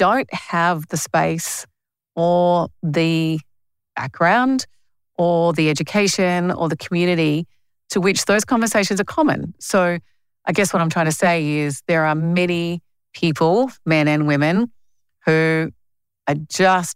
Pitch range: 145-175 Hz